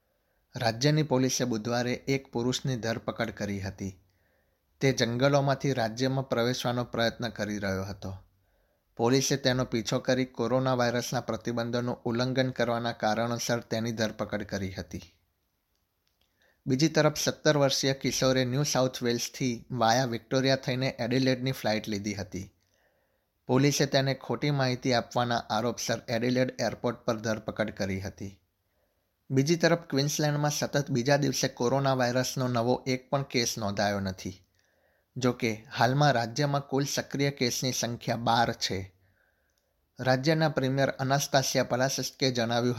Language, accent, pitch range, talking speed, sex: Gujarati, native, 110-130 Hz, 110 wpm, male